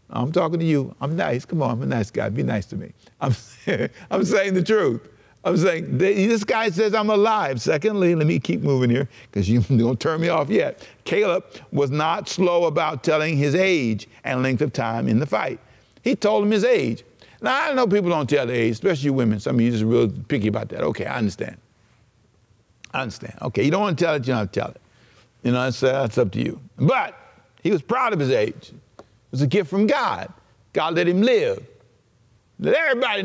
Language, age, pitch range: English, 60-79, 130-215 Hz